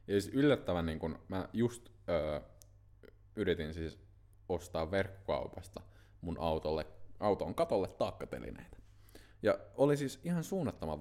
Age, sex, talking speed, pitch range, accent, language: 20-39, male, 115 wpm, 90-105 Hz, native, Finnish